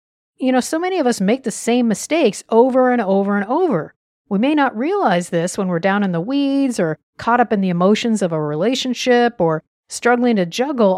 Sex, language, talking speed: female, English, 215 wpm